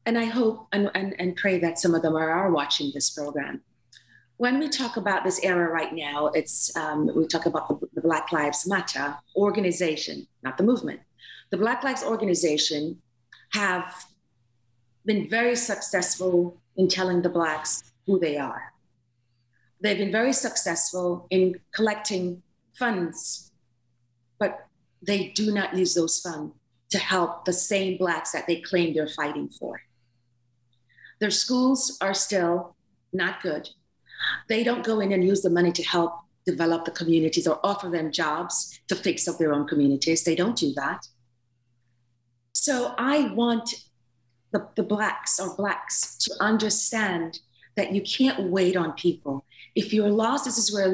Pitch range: 160-205 Hz